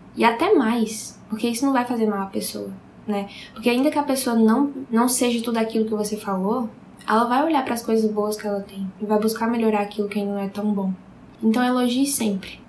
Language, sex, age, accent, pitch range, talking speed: English, female, 10-29, Brazilian, 210-235 Hz, 230 wpm